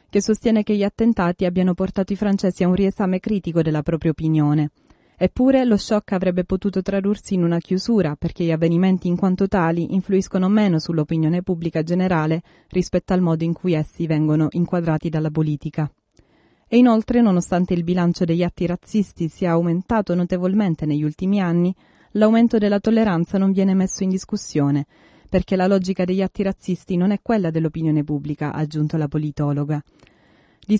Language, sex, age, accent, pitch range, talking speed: Italian, female, 30-49, native, 165-195 Hz, 165 wpm